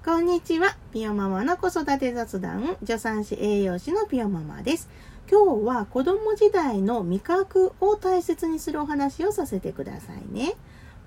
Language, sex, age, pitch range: Japanese, female, 40-59, 200-330 Hz